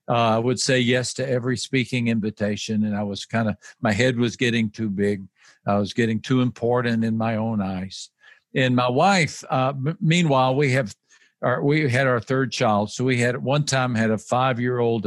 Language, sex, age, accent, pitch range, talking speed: English, male, 50-69, American, 115-140 Hz, 205 wpm